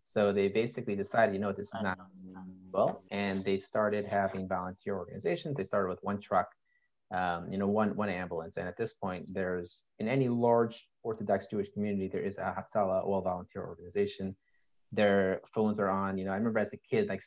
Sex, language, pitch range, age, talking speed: male, English, 95-110 Hz, 30-49, 200 wpm